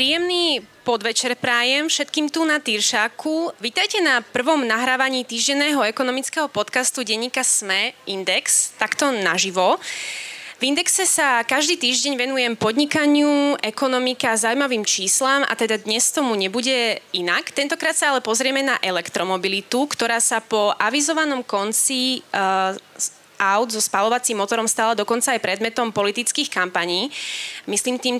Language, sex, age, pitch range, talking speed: Slovak, female, 20-39, 215-280 Hz, 125 wpm